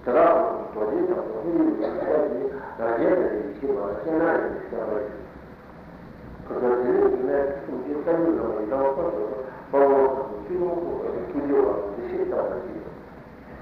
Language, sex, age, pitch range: Italian, male, 60-79, 130-185 Hz